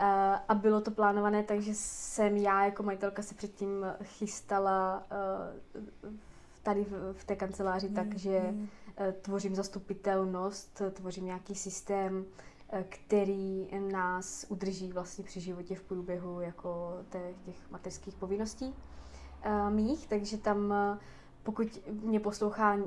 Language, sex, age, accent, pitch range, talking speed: Czech, female, 20-39, native, 190-205 Hz, 110 wpm